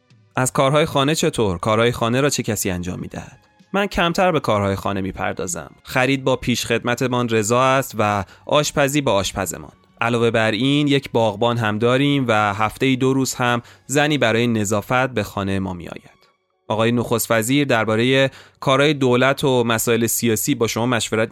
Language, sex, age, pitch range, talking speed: Persian, male, 30-49, 110-130 Hz, 160 wpm